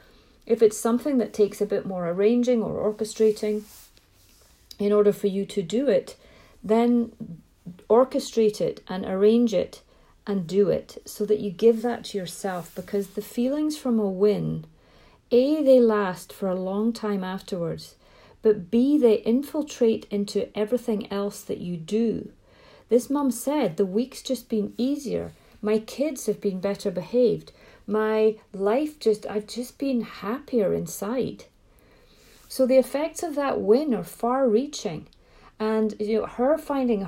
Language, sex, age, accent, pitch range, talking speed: English, female, 40-59, British, 200-245 Hz, 150 wpm